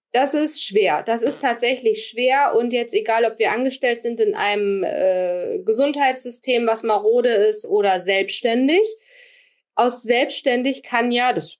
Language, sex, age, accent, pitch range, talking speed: German, female, 20-39, German, 195-260 Hz, 145 wpm